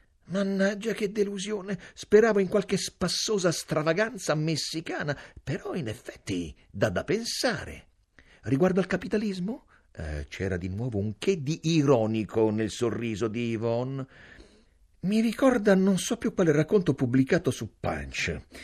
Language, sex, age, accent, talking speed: Italian, male, 50-69, native, 130 wpm